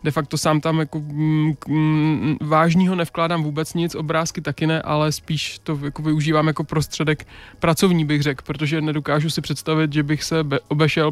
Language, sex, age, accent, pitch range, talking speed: Czech, male, 20-39, native, 150-160 Hz, 160 wpm